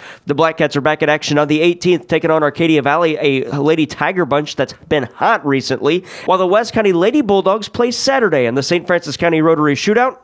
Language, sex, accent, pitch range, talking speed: English, male, American, 145-180 Hz, 215 wpm